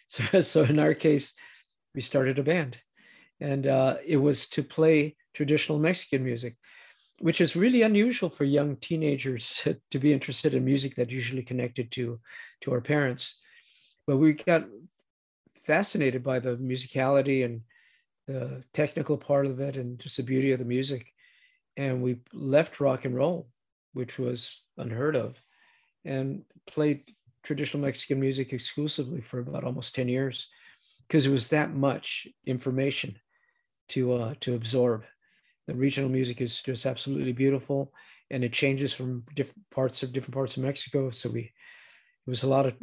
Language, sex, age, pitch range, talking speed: English, male, 50-69, 130-150 Hz, 160 wpm